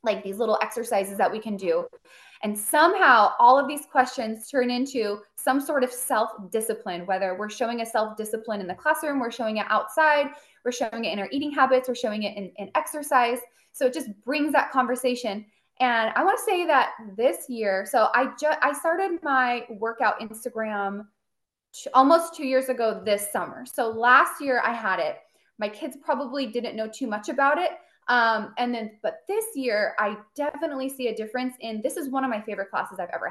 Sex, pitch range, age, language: female, 210-275 Hz, 20-39, English